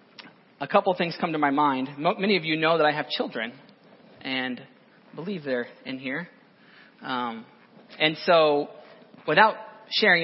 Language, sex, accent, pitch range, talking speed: English, male, American, 155-225 Hz, 150 wpm